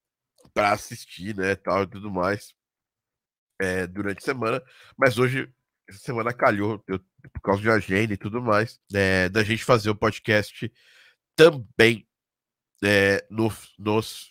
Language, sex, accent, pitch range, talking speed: Portuguese, male, Brazilian, 100-120 Hz, 145 wpm